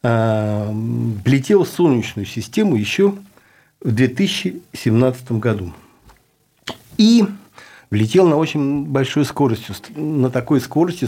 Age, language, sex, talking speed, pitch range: 60-79, Russian, male, 90 wpm, 115-150 Hz